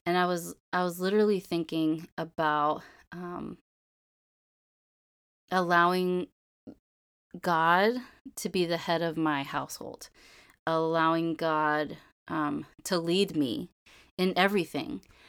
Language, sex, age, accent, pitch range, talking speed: English, female, 20-39, American, 160-190 Hz, 100 wpm